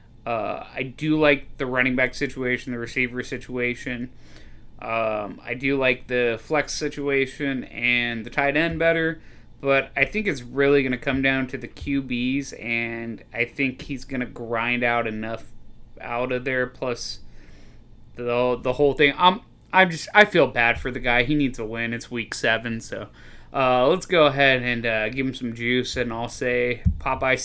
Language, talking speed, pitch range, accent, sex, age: English, 185 wpm, 120-140 Hz, American, male, 20-39